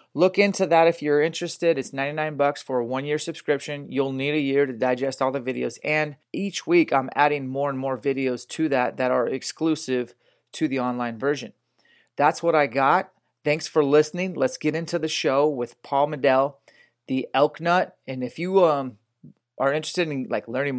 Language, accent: English, American